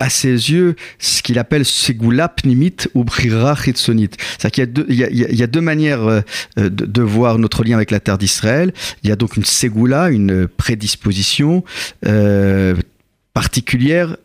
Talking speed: 180 wpm